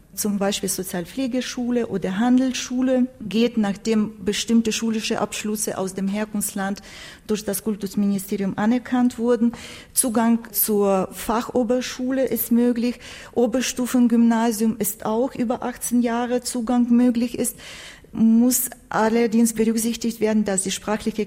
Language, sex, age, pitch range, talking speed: German, female, 40-59, 205-240 Hz, 110 wpm